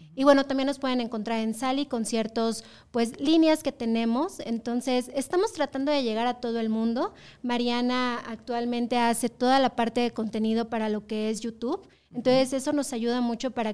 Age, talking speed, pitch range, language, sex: 30-49, 185 wpm, 225-260 Hz, Spanish, female